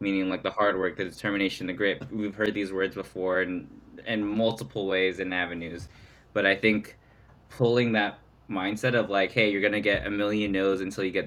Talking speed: 200 wpm